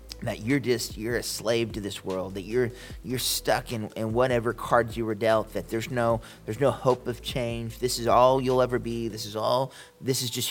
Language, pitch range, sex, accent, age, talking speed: English, 105-125 Hz, male, American, 30-49, 230 wpm